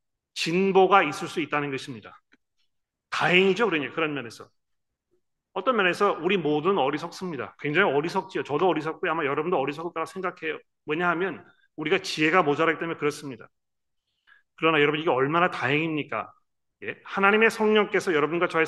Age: 30-49